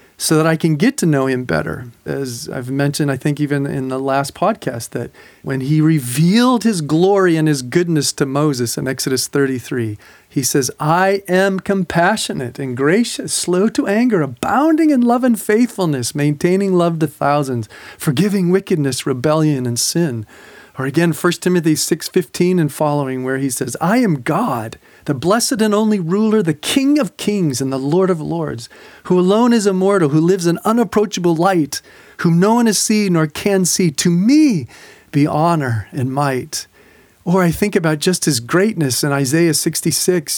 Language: English